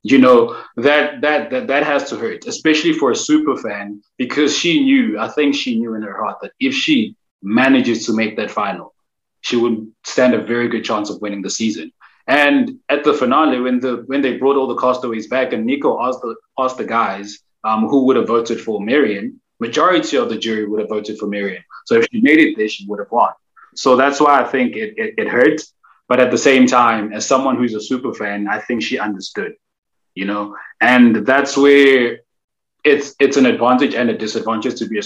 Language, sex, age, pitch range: English, male, 20-39, 110-135 Hz